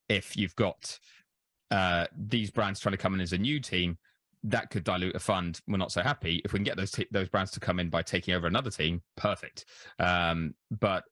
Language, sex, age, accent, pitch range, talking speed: English, male, 20-39, British, 85-105 Hz, 225 wpm